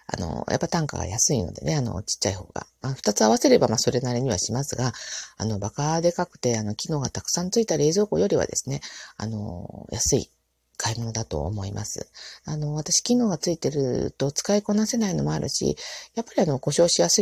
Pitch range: 125-180 Hz